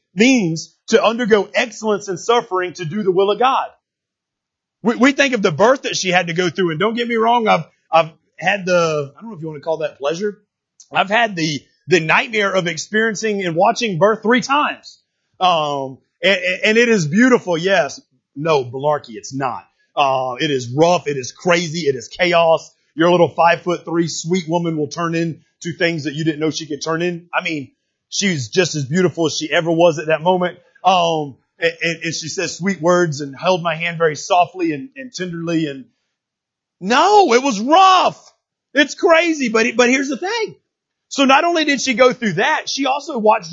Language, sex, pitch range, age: English, male, 165-225 Hz, 30-49